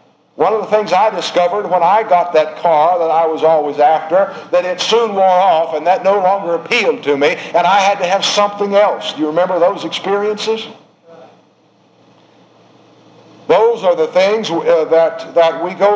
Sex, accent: male, American